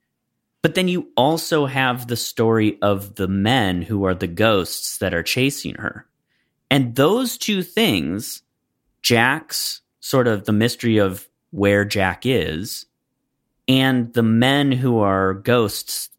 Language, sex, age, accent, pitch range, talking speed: English, male, 30-49, American, 95-140 Hz, 135 wpm